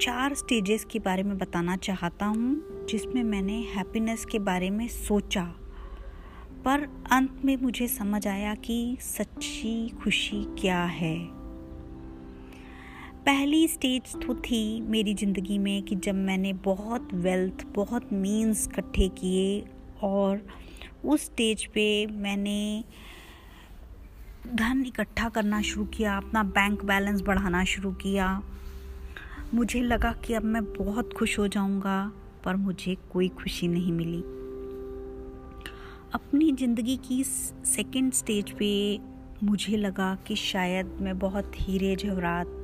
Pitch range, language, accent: 185-225 Hz, Hindi, native